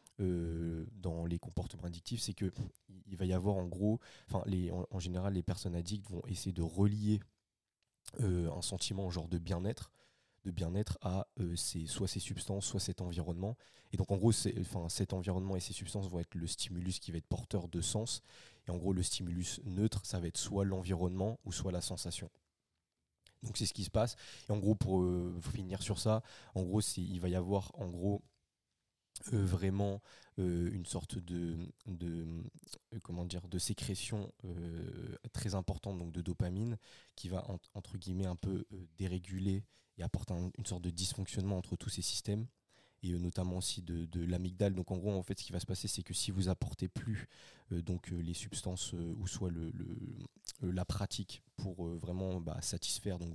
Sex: male